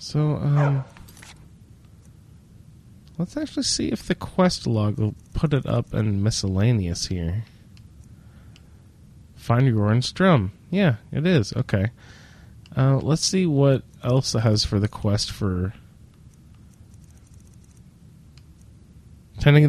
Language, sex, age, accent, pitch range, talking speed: English, male, 30-49, American, 100-140 Hz, 105 wpm